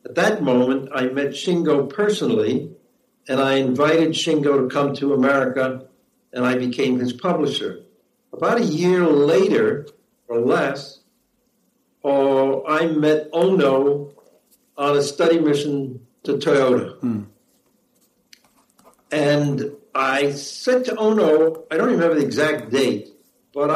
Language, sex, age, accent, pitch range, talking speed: English, male, 60-79, American, 140-210 Hz, 125 wpm